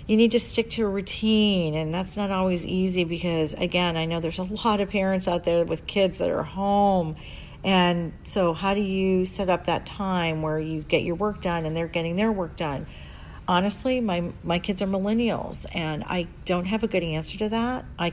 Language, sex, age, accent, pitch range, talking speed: English, female, 40-59, American, 155-205 Hz, 215 wpm